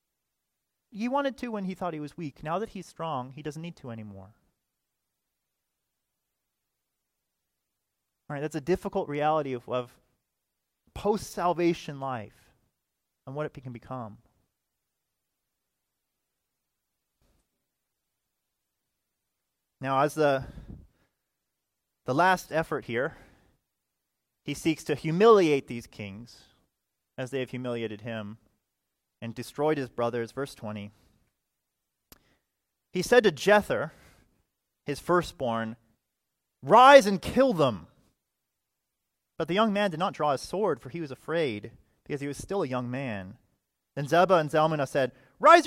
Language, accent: English, American